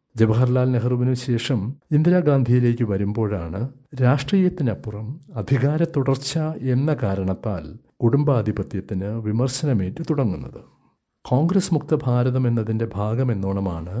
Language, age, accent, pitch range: Malayalam, 60-79, native, 115-145 Hz